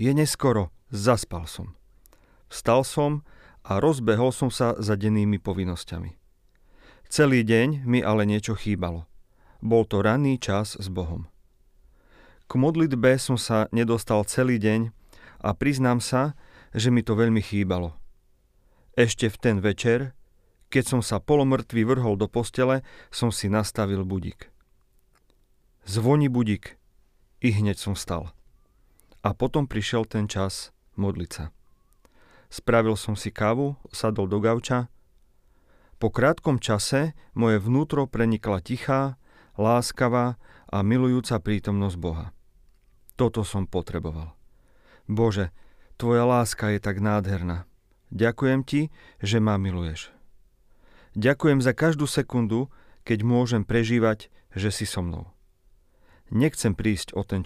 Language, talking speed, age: Slovak, 120 wpm, 40-59